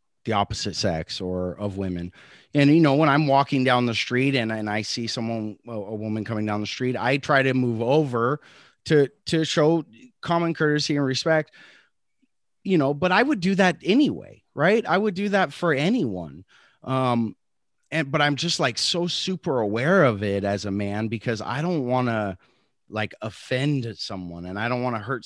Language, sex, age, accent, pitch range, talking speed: English, male, 30-49, American, 110-155 Hz, 195 wpm